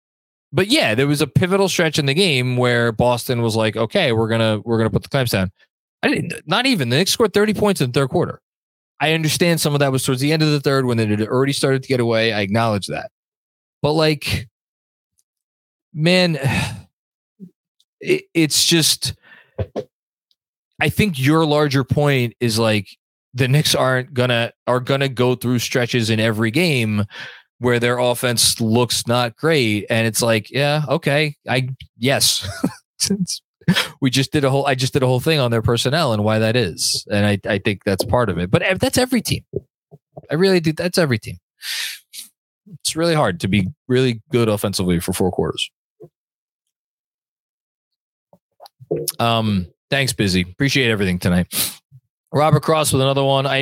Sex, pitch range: male, 115-150 Hz